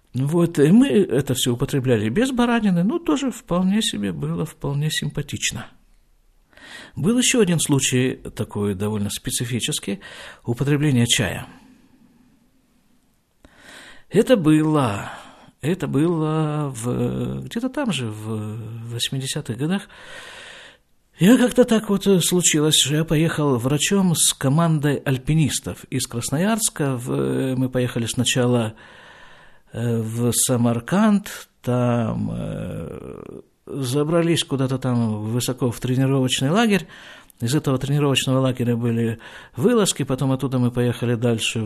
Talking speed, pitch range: 105 wpm, 120-175 Hz